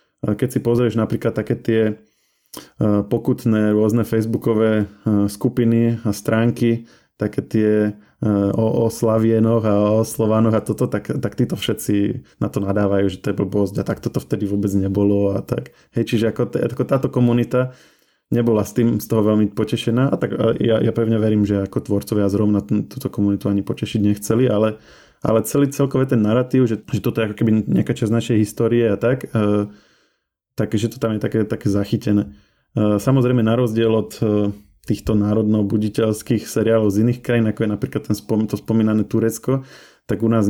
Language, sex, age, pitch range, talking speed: Slovak, male, 20-39, 105-115 Hz, 170 wpm